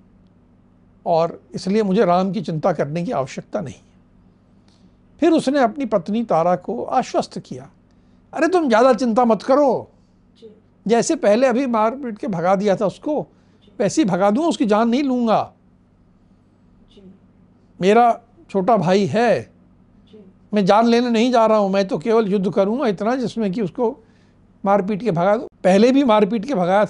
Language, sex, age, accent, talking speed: Hindi, male, 60-79, native, 155 wpm